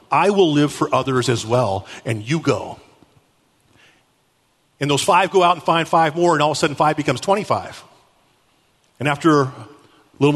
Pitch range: 150-240 Hz